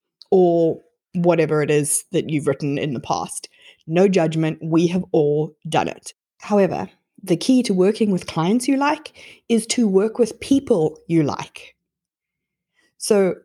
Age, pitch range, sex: 20-39, 165-220 Hz, female